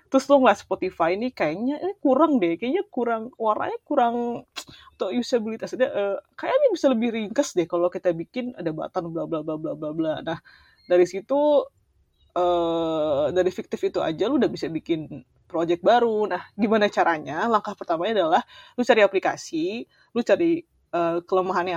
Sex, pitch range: female, 180-230 Hz